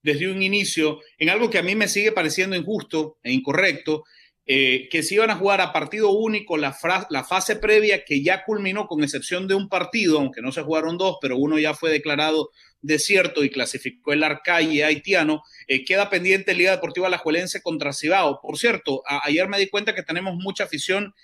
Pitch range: 155-205 Hz